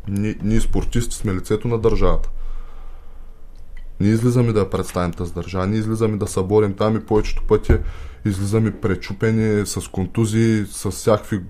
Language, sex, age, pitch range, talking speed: Bulgarian, male, 20-39, 90-115 Hz, 140 wpm